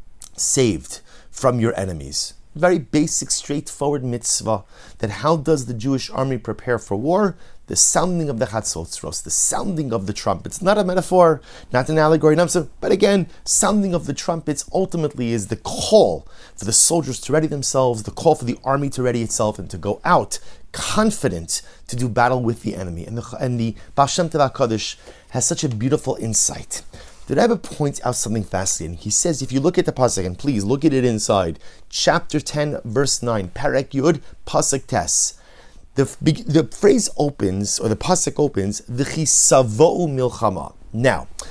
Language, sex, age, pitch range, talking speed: English, male, 30-49, 110-155 Hz, 175 wpm